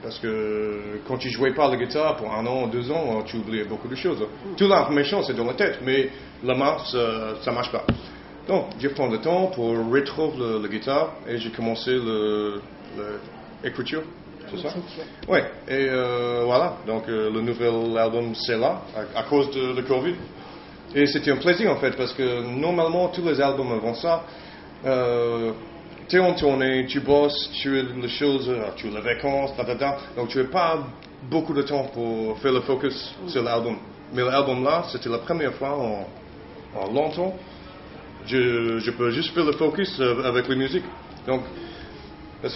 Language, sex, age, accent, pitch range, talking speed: French, male, 30-49, Belgian, 115-150 Hz, 180 wpm